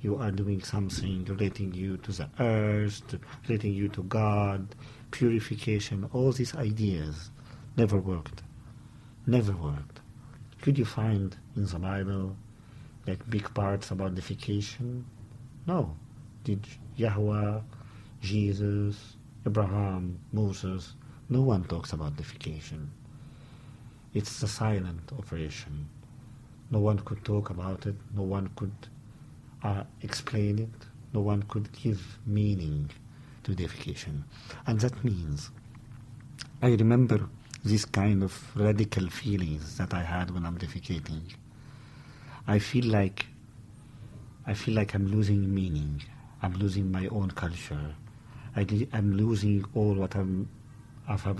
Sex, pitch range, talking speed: male, 100-125 Hz, 120 wpm